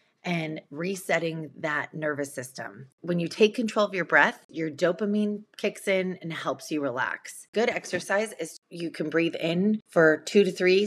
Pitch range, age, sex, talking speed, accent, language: 150-190 Hz, 30-49, female, 170 wpm, American, English